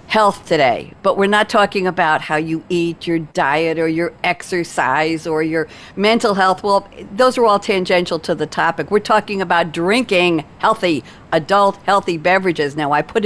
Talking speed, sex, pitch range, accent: 170 wpm, female, 165-205 Hz, American